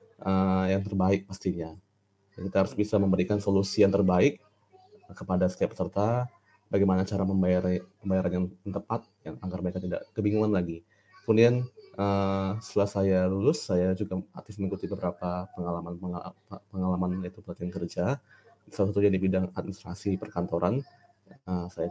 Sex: male